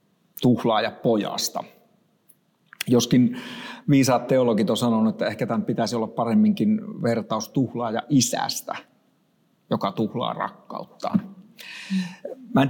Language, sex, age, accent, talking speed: Finnish, male, 50-69, native, 100 wpm